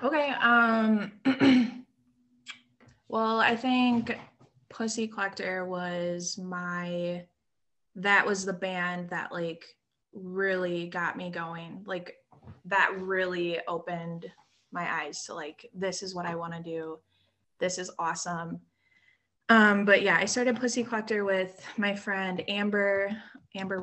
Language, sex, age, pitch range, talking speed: English, female, 20-39, 180-220 Hz, 125 wpm